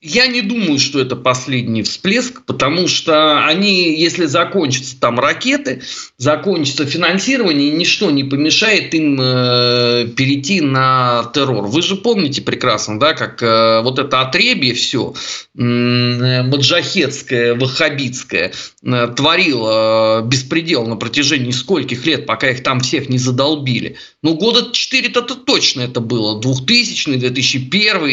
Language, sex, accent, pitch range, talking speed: Russian, male, native, 130-195 Hz, 120 wpm